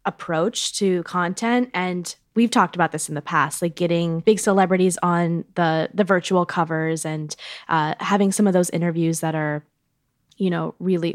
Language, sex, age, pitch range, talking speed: English, female, 10-29, 160-190 Hz, 170 wpm